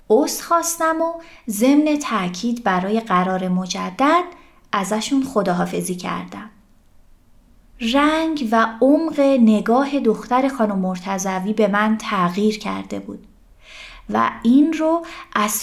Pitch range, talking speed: 215-275 Hz, 105 wpm